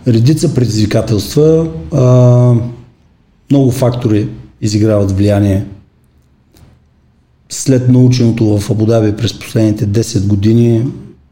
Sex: male